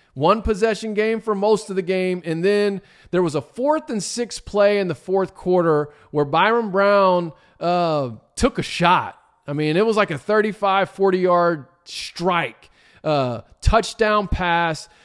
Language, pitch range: English, 165-220 Hz